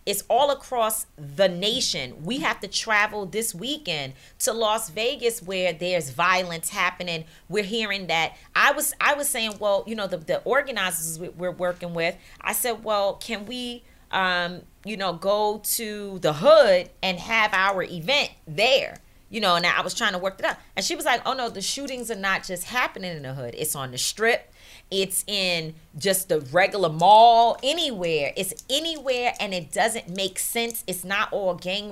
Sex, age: female, 30-49